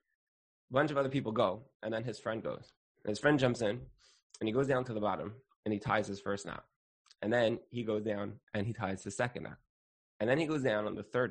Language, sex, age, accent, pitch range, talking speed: English, male, 20-39, American, 100-125 Hz, 255 wpm